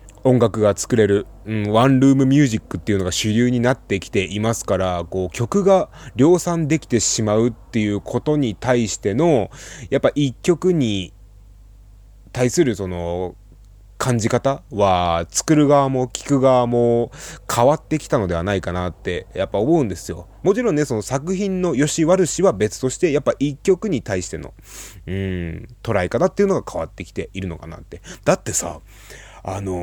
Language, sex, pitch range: Japanese, male, 95-135 Hz